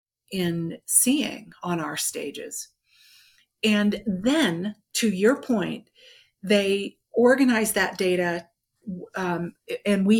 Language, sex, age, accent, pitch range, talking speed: English, female, 50-69, American, 190-245 Hz, 100 wpm